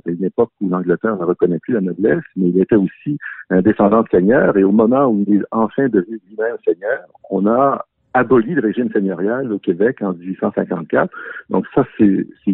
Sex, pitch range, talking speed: male, 95-120 Hz, 200 wpm